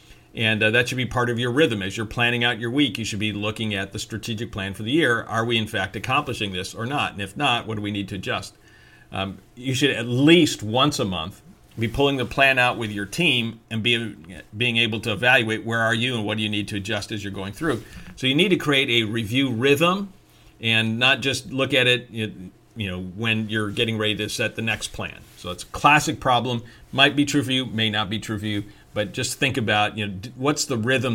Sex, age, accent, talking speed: male, 50-69, American, 245 wpm